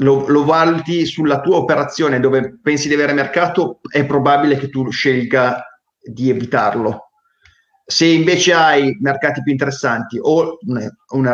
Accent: native